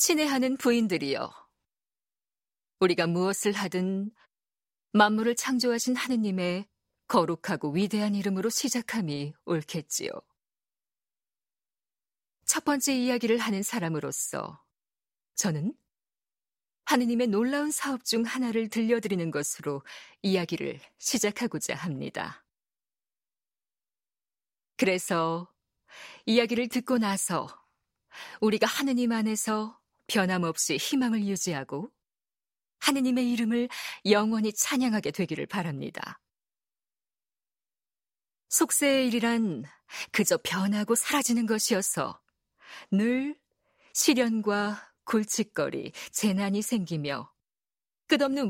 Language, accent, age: Korean, native, 40-59